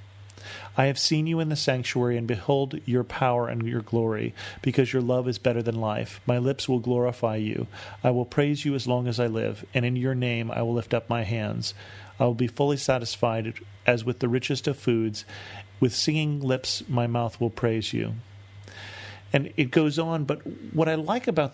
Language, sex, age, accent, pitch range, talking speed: English, male, 40-59, American, 110-135 Hz, 205 wpm